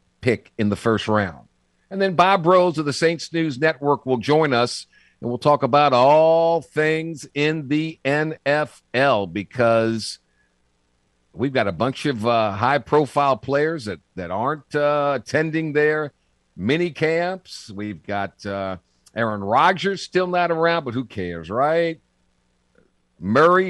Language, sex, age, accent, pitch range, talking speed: English, male, 50-69, American, 110-160 Hz, 145 wpm